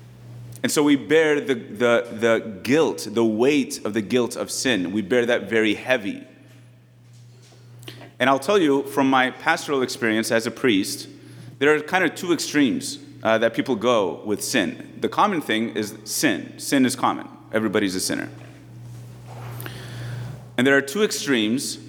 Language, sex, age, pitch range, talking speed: English, male, 30-49, 115-135 Hz, 160 wpm